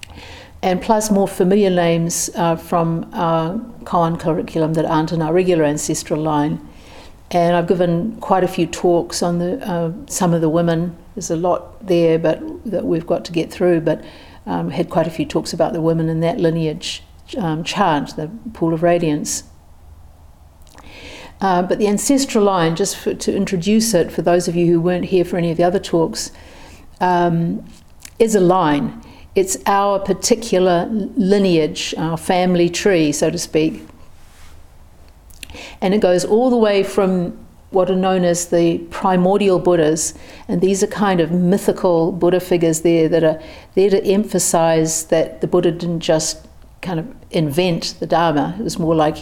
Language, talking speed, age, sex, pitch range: English, 170 wpm, 50-69, female, 160-190 Hz